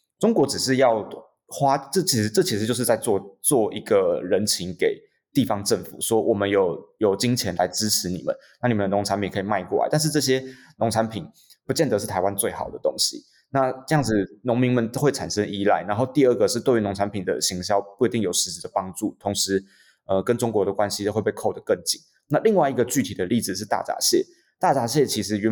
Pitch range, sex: 100-145 Hz, male